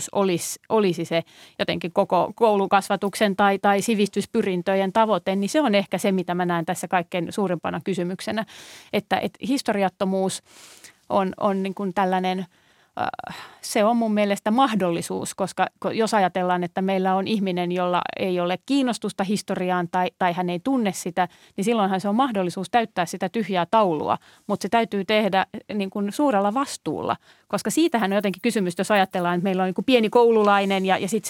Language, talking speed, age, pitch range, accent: Finnish, 165 wpm, 30-49, 185-220 Hz, native